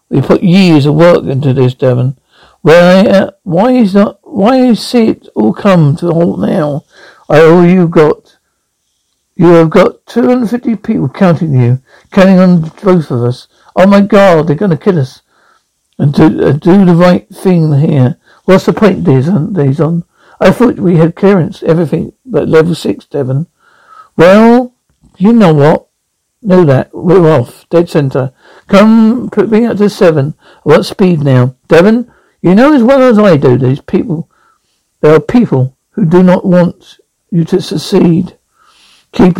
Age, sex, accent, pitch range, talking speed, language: 60-79, male, British, 150-195 Hz, 170 wpm, English